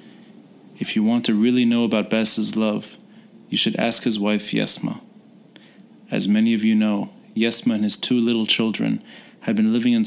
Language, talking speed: English, 180 wpm